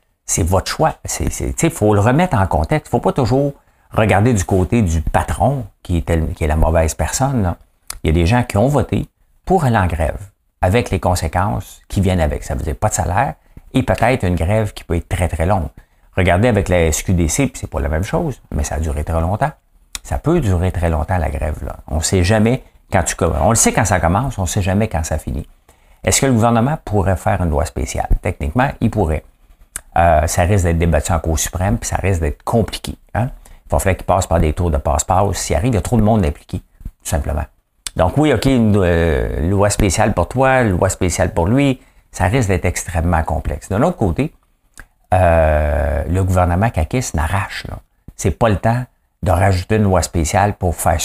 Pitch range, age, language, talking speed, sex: 80-105 Hz, 50-69, English, 230 wpm, male